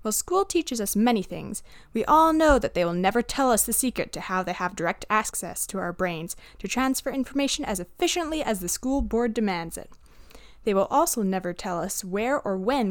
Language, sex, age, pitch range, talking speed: English, female, 10-29, 185-285 Hz, 215 wpm